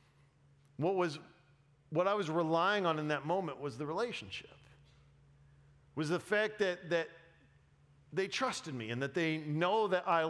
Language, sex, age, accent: English, male, 40-59, American